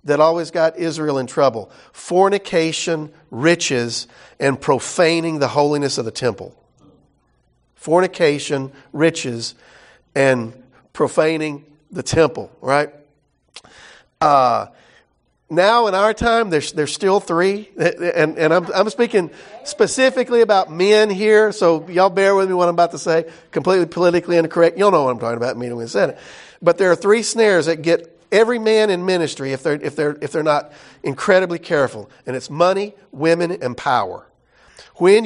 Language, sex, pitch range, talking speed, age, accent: English, male, 135-180 Hz, 150 wpm, 50-69, American